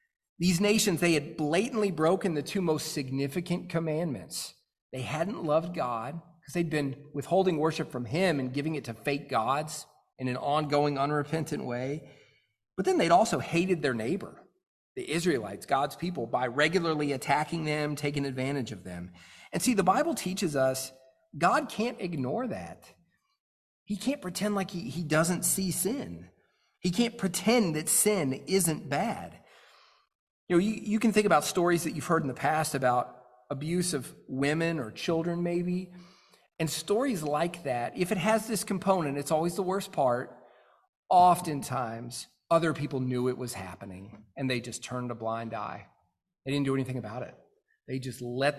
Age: 40-59